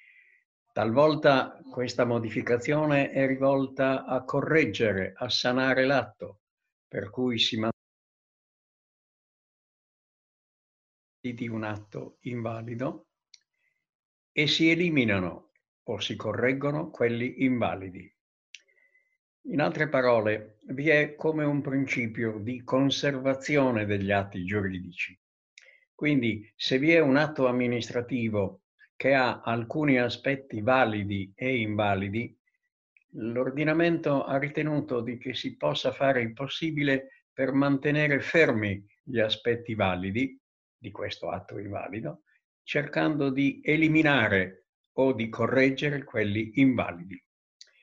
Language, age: Italian, 60-79